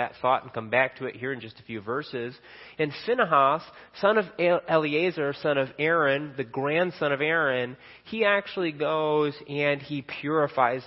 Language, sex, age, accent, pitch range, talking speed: English, male, 30-49, American, 120-160 Hz, 170 wpm